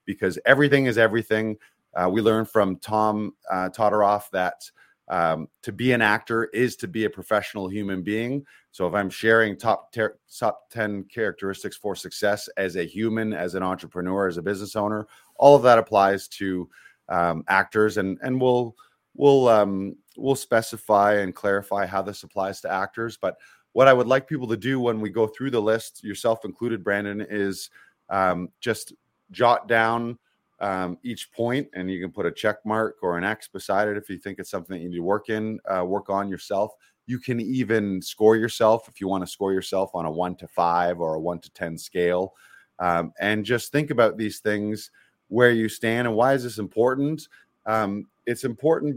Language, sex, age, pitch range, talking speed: English, male, 30-49, 95-120 Hz, 195 wpm